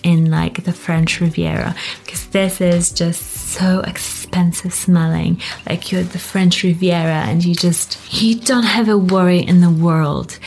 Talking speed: 160 wpm